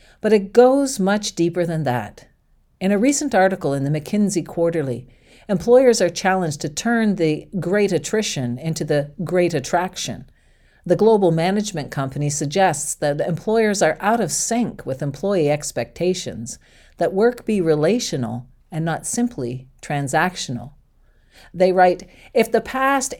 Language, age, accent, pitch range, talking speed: English, 50-69, American, 145-215 Hz, 140 wpm